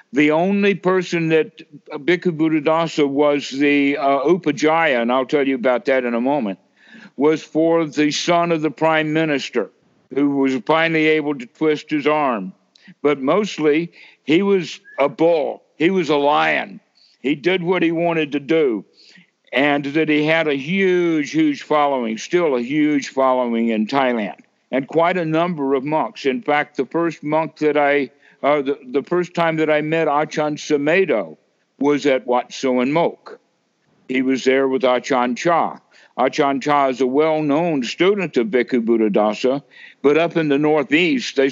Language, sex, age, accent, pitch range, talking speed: English, male, 60-79, American, 135-165 Hz, 170 wpm